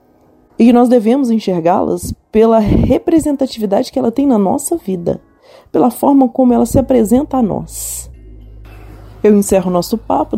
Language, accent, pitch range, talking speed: Portuguese, Brazilian, 185-270 Hz, 145 wpm